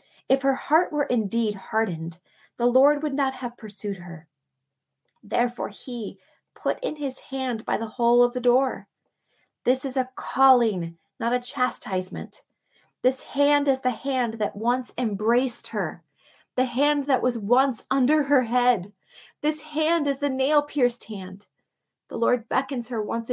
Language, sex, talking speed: English, female, 155 wpm